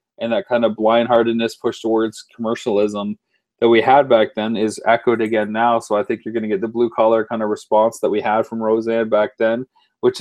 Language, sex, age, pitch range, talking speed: English, male, 30-49, 110-130 Hz, 225 wpm